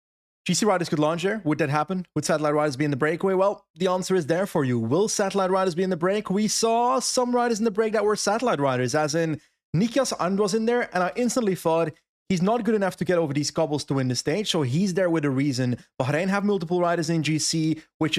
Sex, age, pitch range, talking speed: male, 30-49, 145-190 Hz, 250 wpm